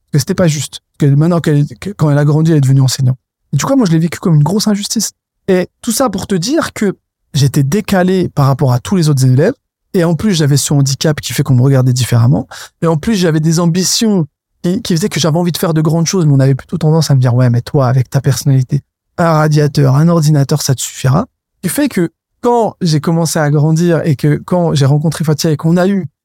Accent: French